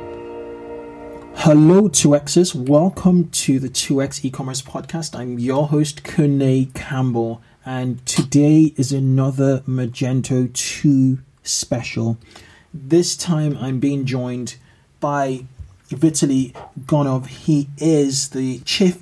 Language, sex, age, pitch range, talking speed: English, male, 20-39, 120-145 Hz, 100 wpm